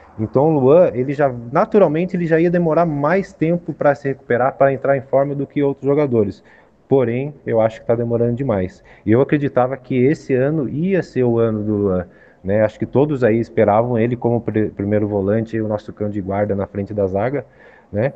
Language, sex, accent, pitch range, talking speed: Portuguese, male, Brazilian, 110-145 Hz, 200 wpm